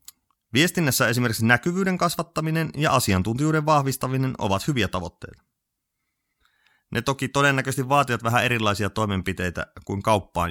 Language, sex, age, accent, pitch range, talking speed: Finnish, male, 30-49, native, 100-145 Hz, 110 wpm